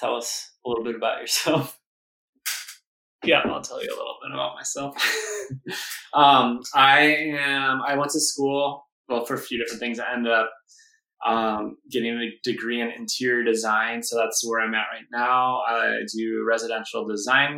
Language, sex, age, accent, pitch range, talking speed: English, male, 20-39, American, 105-125 Hz, 170 wpm